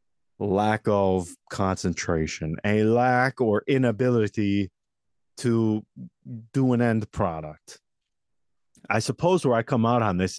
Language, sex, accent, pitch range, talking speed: English, male, American, 90-125 Hz, 115 wpm